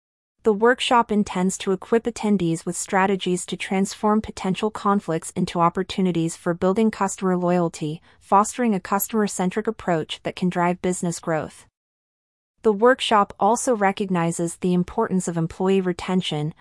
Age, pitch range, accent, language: 30-49, 170-205 Hz, American, English